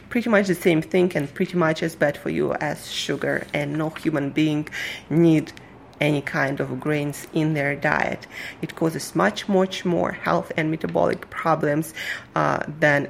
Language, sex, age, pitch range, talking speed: English, female, 30-49, 150-185 Hz, 170 wpm